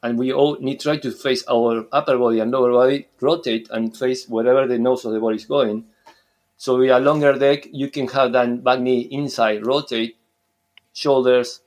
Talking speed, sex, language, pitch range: 200 wpm, male, English, 115-135 Hz